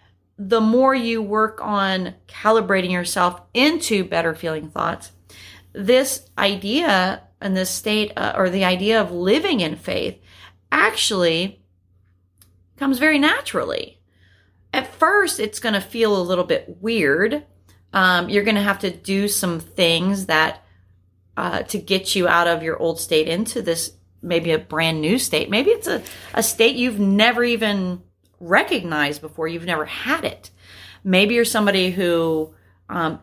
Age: 30-49